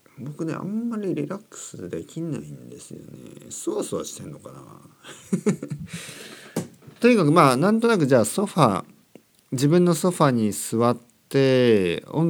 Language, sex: Japanese, male